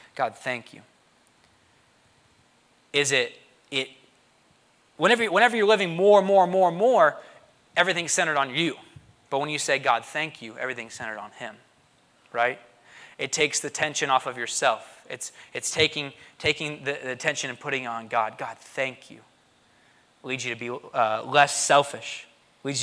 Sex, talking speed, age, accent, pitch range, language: male, 160 wpm, 20-39, American, 130-160 Hz, English